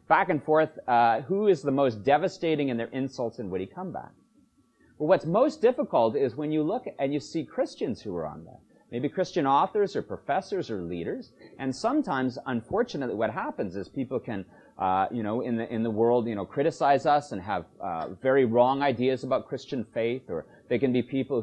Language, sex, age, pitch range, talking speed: English, male, 30-49, 115-150 Hz, 200 wpm